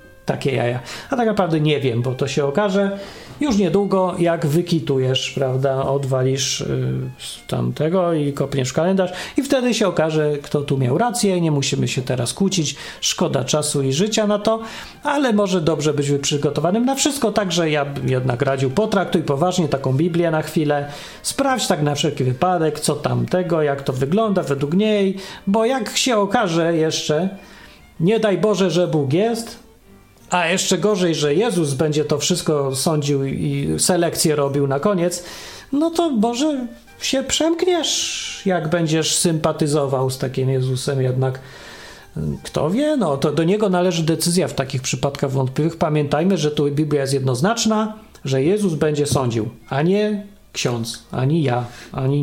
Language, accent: Polish, native